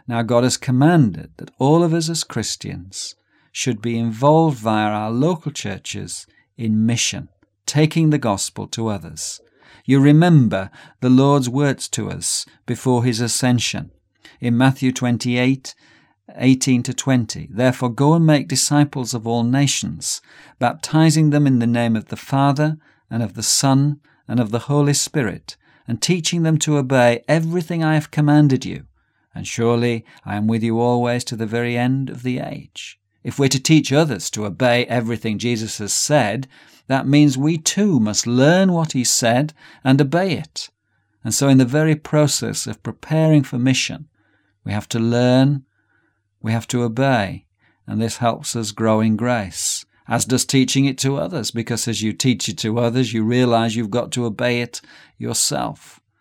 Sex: male